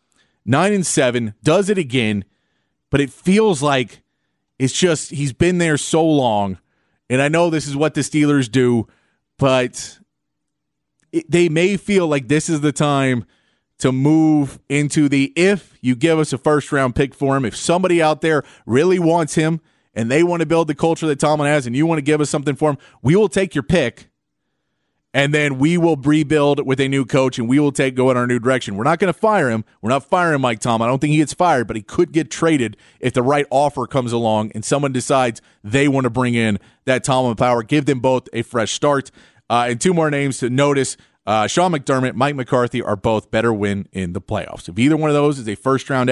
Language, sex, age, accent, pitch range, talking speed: English, male, 30-49, American, 125-160 Hz, 220 wpm